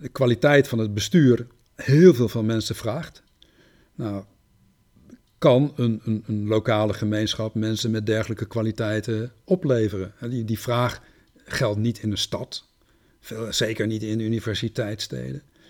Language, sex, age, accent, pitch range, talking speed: Dutch, male, 50-69, Dutch, 110-145 Hz, 125 wpm